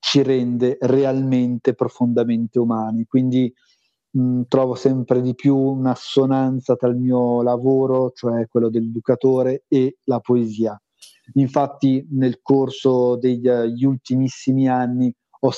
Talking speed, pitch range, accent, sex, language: 110 wpm, 120-135 Hz, native, male, Italian